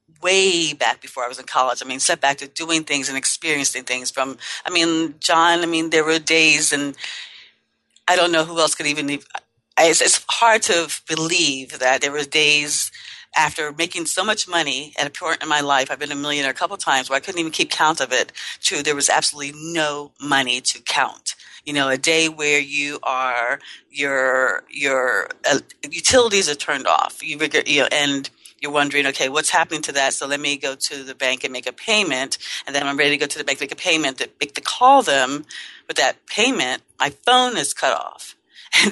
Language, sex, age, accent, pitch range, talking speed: English, female, 40-59, American, 140-165 Hz, 215 wpm